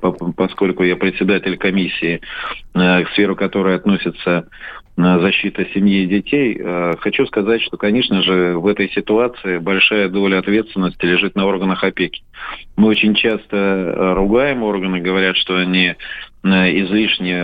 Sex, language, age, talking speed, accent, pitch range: male, Russian, 40-59, 125 wpm, native, 90-105 Hz